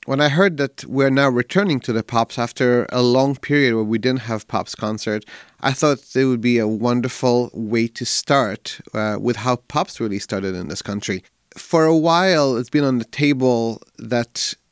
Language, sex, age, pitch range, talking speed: English, male, 30-49, 115-150 Hz, 195 wpm